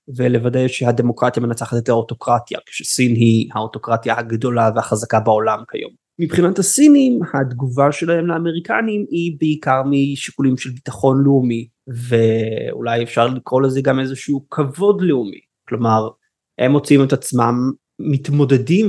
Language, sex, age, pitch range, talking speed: Hebrew, male, 20-39, 130-155 Hz, 120 wpm